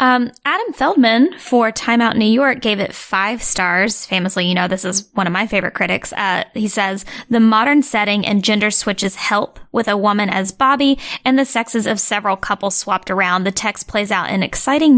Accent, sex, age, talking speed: American, female, 10-29, 205 wpm